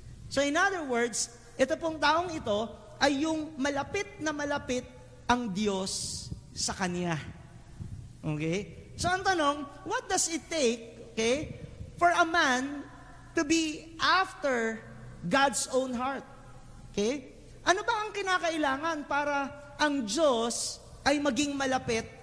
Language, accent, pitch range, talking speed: English, Filipino, 230-290 Hz, 125 wpm